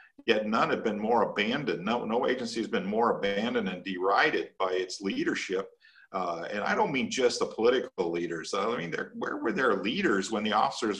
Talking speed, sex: 195 wpm, male